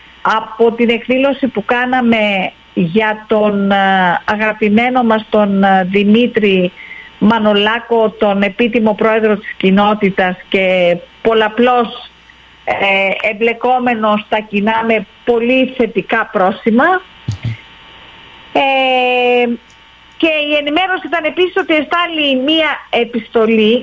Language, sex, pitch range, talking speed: Greek, female, 195-250 Hz, 90 wpm